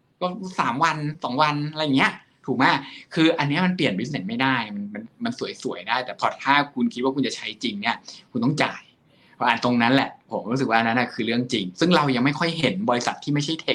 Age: 20-39